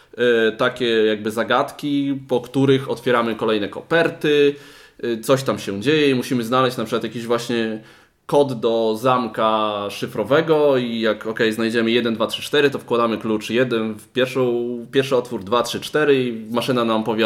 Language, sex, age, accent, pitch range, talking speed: Polish, male, 20-39, native, 110-140 Hz, 165 wpm